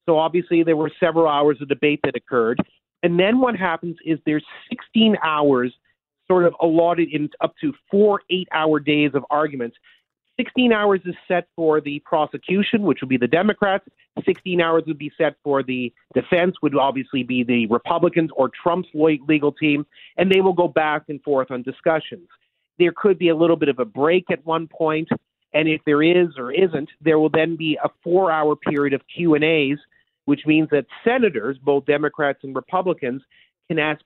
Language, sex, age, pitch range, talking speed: English, male, 40-59, 140-170 Hz, 185 wpm